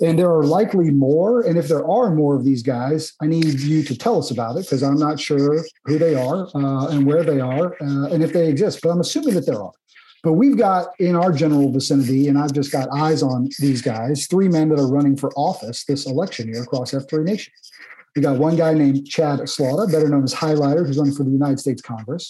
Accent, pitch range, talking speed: American, 135-160 Hz, 240 wpm